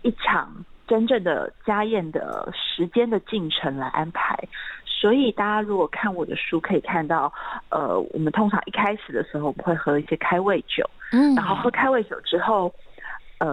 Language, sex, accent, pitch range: Chinese, female, native, 170-245 Hz